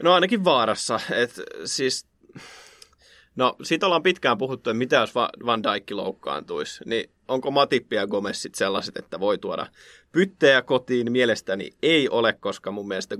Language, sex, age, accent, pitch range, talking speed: Finnish, male, 30-49, native, 110-170 Hz, 155 wpm